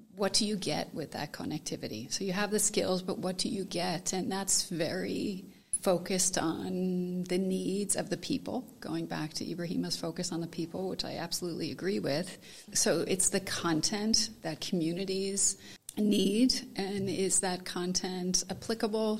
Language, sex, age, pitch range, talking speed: English, female, 30-49, 170-200 Hz, 165 wpm